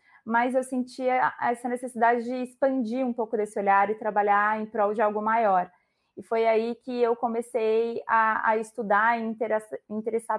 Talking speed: 175 wpm